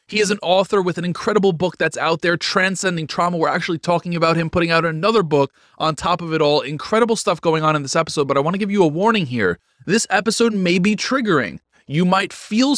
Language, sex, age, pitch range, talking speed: English, male, 20-39, 155-205 Hz, 240 wpm